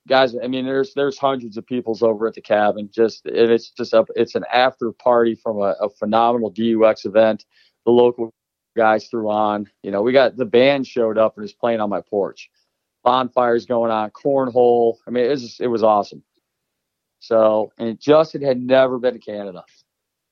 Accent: American